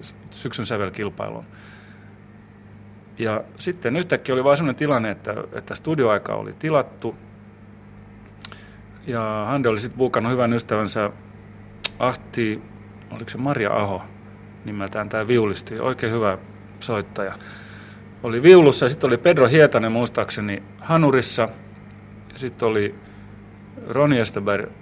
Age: 40-59